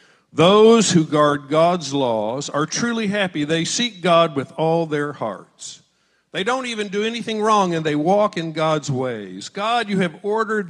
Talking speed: 175 wpm